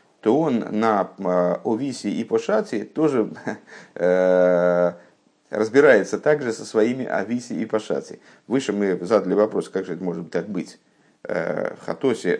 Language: Russian